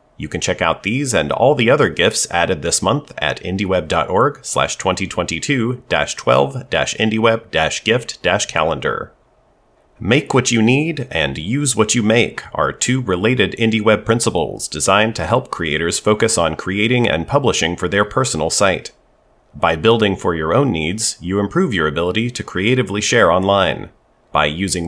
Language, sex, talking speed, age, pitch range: English, male, 145 wpm, 30-49, 90-125 Hz